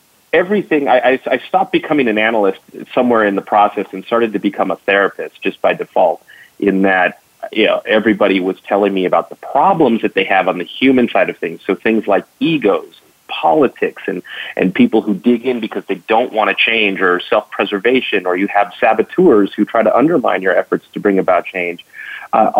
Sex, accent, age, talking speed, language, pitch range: male, American, 30-49, 200 wpm, English, 100-125 Hz